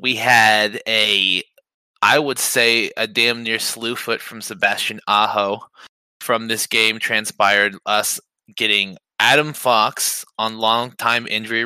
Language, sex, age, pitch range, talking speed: English, male, 20-39, 105-125 Hz, 130 wpm